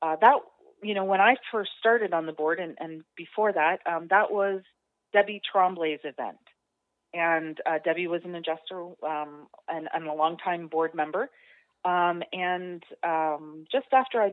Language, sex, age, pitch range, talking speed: English, female, 30-49, 160-185 Hz, 170 wpm